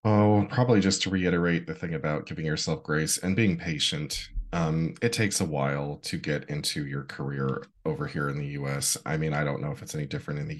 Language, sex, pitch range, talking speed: English, male, 75-95 Hz, 225 wpm